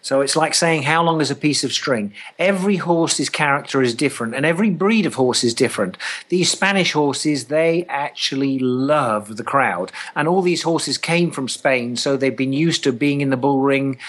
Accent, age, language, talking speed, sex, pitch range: British, 50-69, English, 205 wpm, male, 140-175 Hz